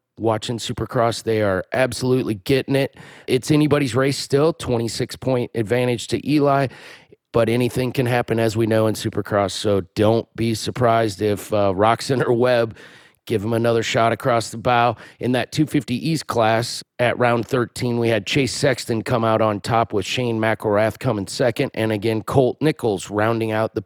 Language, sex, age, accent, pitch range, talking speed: English, male, 40-59, American, 110-130 Hz, 175 wpm